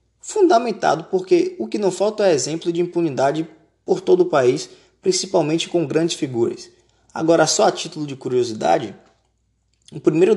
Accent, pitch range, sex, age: Brazilian, 125-190 Hz, male, 20-39